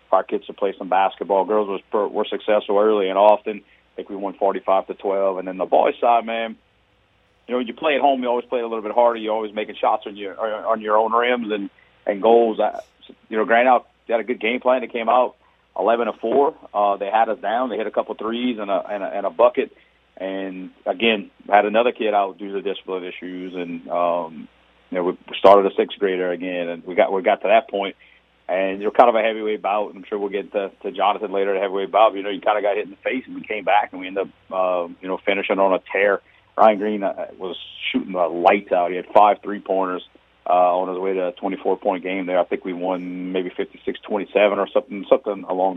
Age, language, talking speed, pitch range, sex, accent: 40-59, English, 245 wpm, 95-115 Hz, male, American